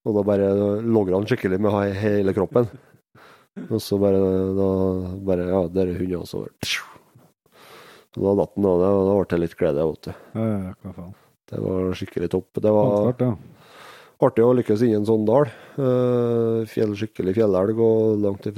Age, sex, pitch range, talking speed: 30-49, male, 95-115 Hz, 140 wpm